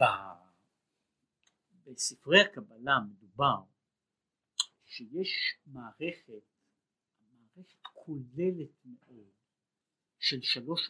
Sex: male